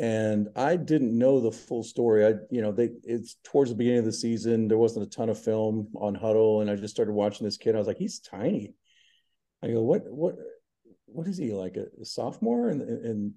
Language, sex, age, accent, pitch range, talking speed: English, male, 50-69, American, 100-115 Hz, 225 wpm